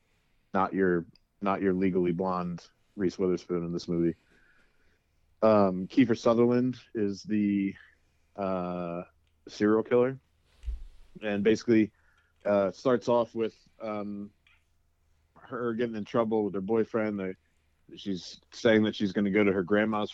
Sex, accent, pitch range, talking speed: male, American, 85-105 Hz, 130 wpm